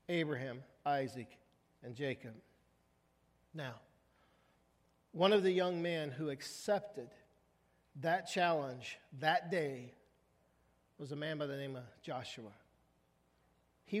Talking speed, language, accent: 105 wpm, English, American